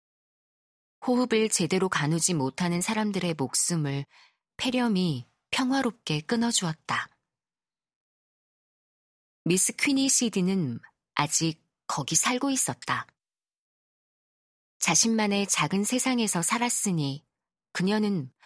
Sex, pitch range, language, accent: female, 160-225 Hz, Korean, native